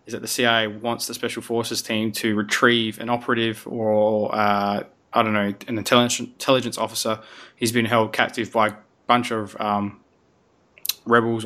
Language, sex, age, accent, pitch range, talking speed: English, male, 20-39, Australian, 110-120 Hz, 160 wpm